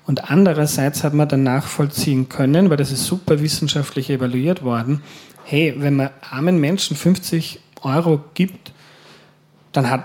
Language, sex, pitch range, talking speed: German, male, 140-165 Hz, 145 wpm